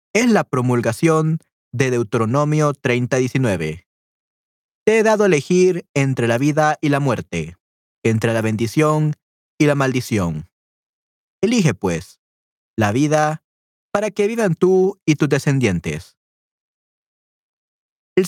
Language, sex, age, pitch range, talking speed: Spanish, male, 30-49, 120-170 Hz, 115 wpm